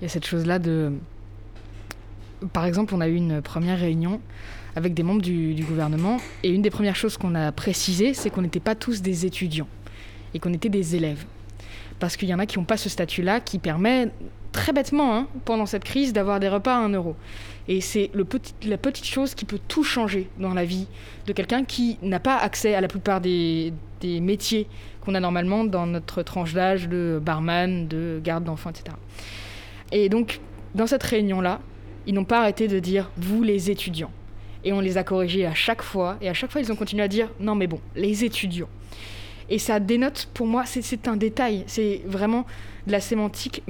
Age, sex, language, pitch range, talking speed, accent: 20-39, female, French, 160-215 Hz, 215 wpm, French